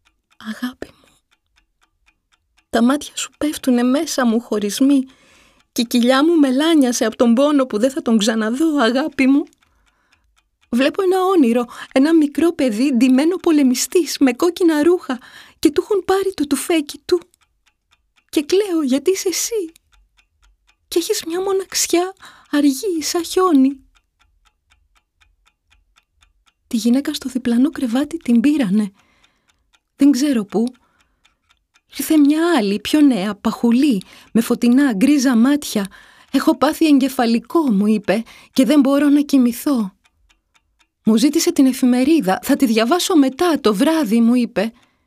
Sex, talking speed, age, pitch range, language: female, 130 wpm, 30-49, 245-325 Hz, Greek